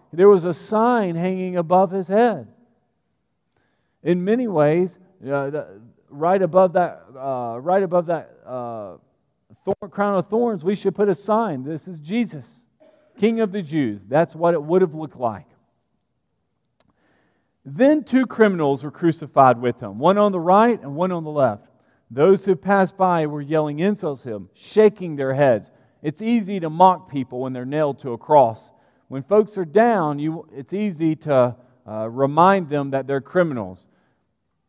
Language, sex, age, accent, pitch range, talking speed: English, male, 40-59, American, 140-195 Hz, 165 wpm